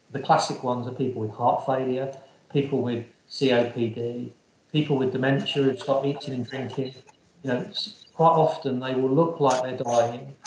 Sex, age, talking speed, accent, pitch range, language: male, 40-59, 165 wpm, British, 125-145 Hz, English